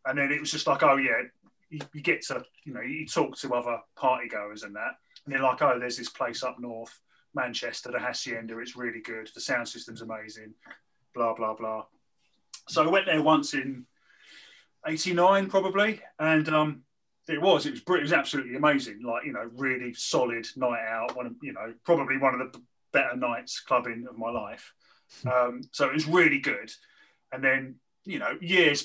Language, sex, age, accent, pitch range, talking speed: English, male, 30-49, British, 120-155 Hz, 195 wpm